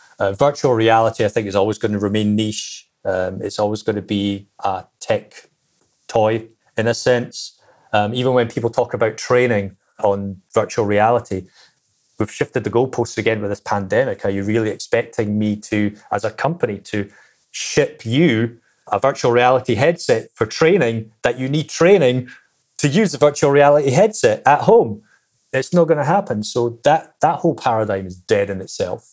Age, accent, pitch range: 30-49, British, 105-125 Hz